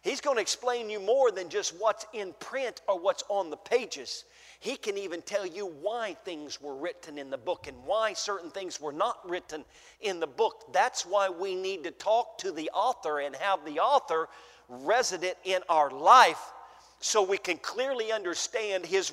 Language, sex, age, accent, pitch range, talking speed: English, male, 50-69, American, 190-315 Hz, 190 wpm